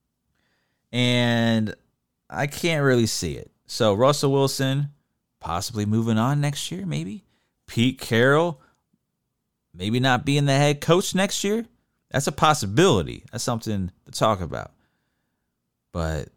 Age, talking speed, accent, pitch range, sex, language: 30-49, 125 wpm, American, 110-150 Hz, male, English